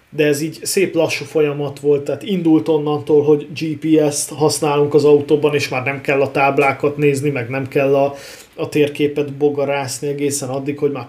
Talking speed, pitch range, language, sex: 180 wpm, 125-145 Hz, Hungarian, male